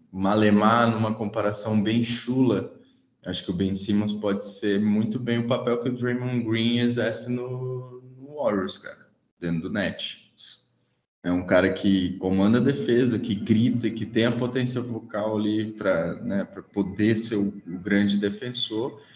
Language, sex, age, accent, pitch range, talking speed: Portuguese, male, 20-39, Brazilian, 105-150 Hz, 155 wpm